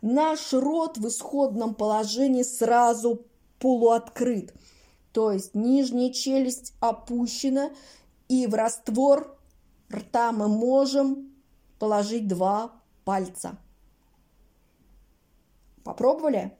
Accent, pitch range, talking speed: native, 205-270 Hz, 80 wpm